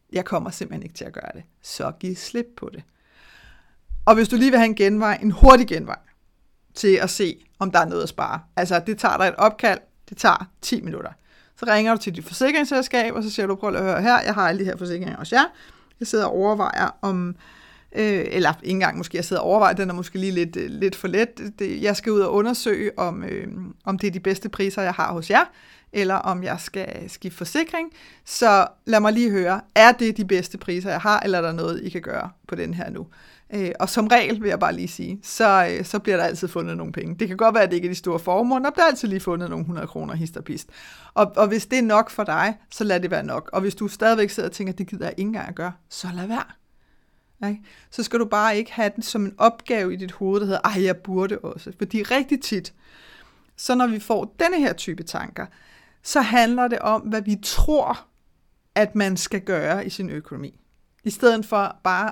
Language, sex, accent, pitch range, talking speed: Danish, female, native, 185-225 Hz, 245 wpm